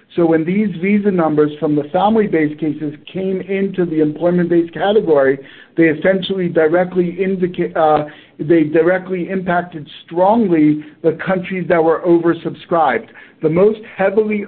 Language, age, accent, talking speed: English, 60-79, American, 130 wpm